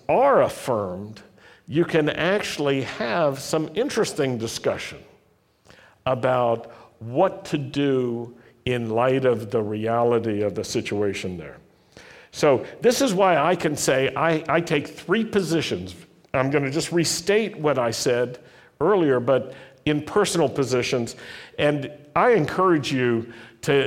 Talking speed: 130 wpm